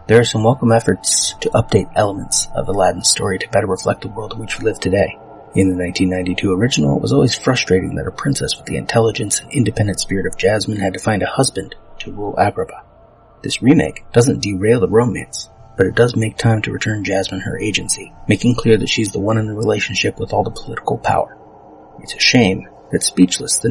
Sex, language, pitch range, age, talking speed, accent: male, English, 95-120 Hz, 30-49, 215 wpm, American